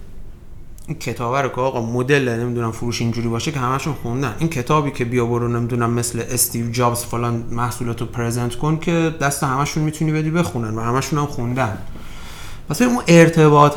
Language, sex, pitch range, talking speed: Persian, male, 115-160 Hz, 170 wpm